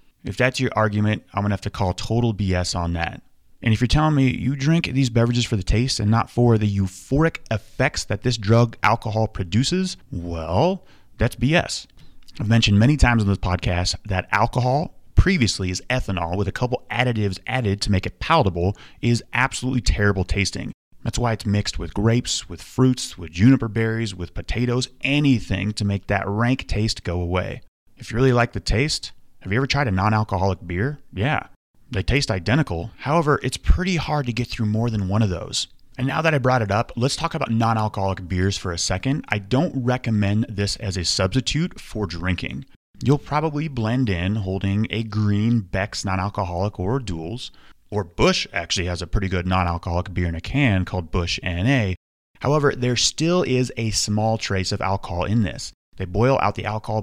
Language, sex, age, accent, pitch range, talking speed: English, male, 30-49, American, 95-125 Hz, 190 wpm